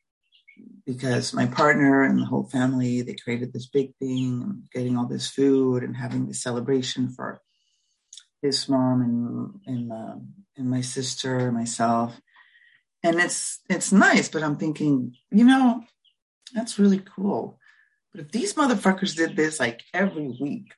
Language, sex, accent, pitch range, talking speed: English, female, American, 135-210 Hz, 150 wpm